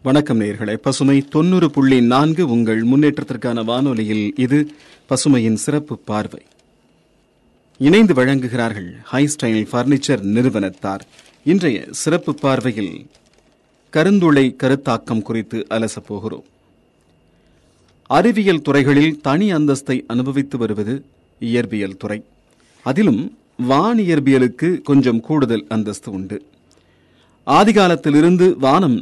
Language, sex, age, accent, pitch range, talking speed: Tamil, male, 40-59, native, 115-145 Hz, 85 wpm